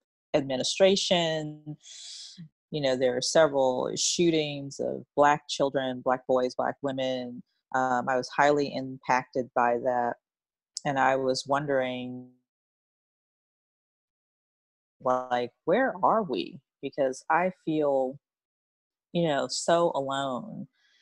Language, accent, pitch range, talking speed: English, American, 130-150 Hz, 105 wpm